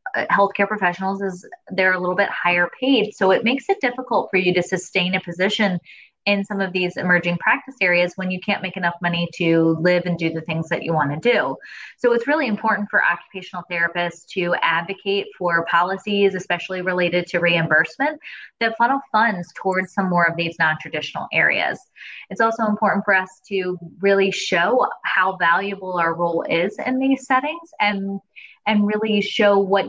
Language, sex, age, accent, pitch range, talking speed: English, female, 20-39, American, 175-210 Hz, 180 wpm